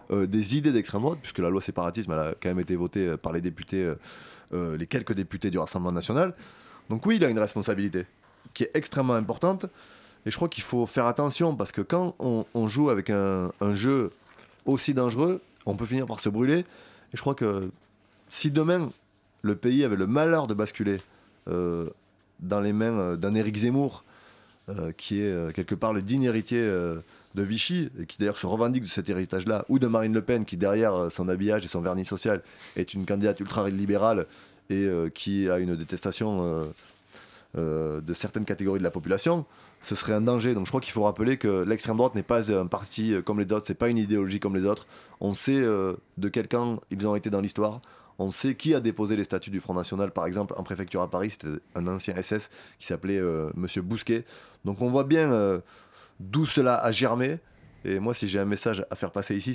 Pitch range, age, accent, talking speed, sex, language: 95-120 Hz, 30-49, French, 220 wpm, male, French